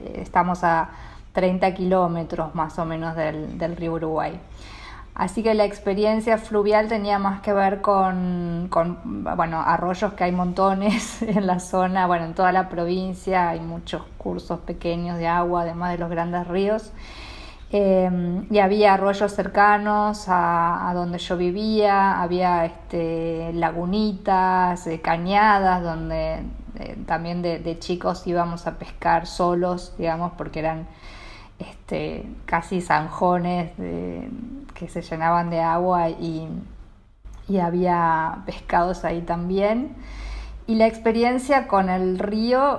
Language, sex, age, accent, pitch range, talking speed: Spanish, female, 20-39, Argentinian, 170-195 Hz, 125 wpm